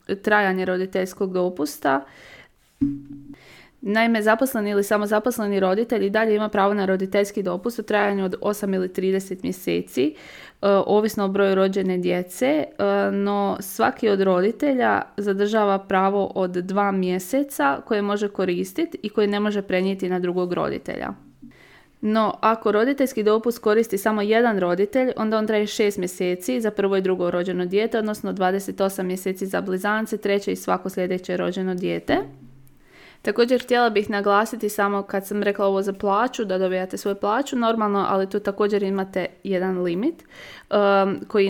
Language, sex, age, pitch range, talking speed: Croatian, female, 20-39, 185-210 Hz, 145 wpm